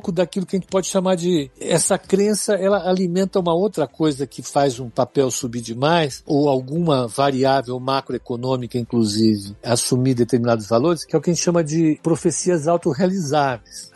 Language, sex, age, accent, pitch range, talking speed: Portuguese, male, 60-79, Brazilian, 135-190 Hz, 165 wpm